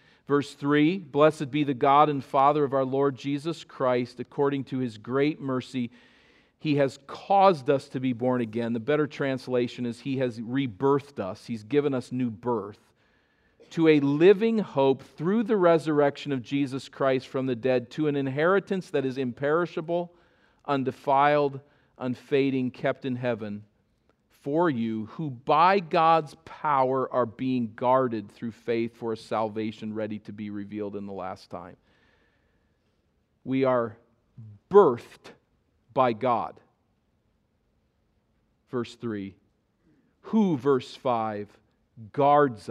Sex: male